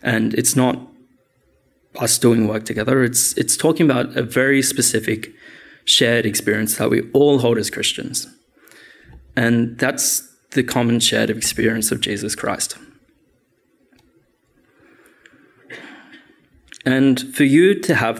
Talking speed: 120 wpm